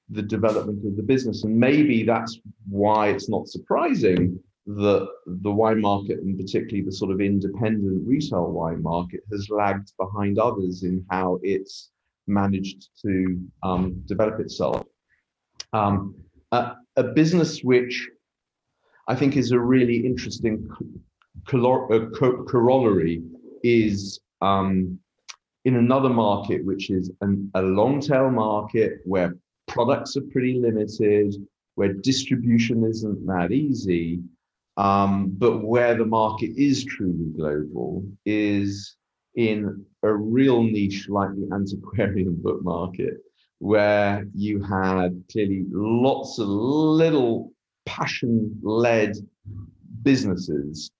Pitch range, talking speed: 95-115 Hz, 115 wpm